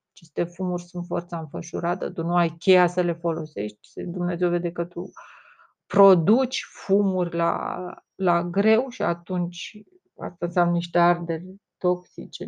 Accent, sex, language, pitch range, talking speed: native, female, Romanian, 170-195 Hz, 135 wpm